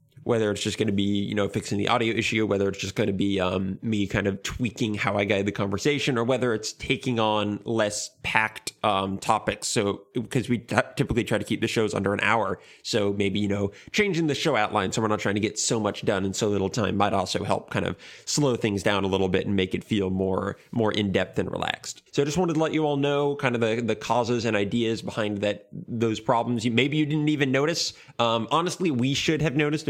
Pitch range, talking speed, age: 100-125 Hz, 245 wpm, 20-39